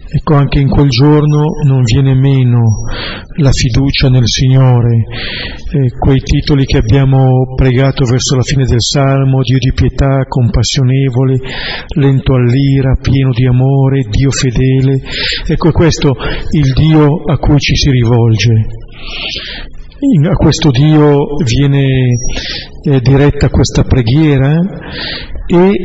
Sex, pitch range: male, 125-145 Hz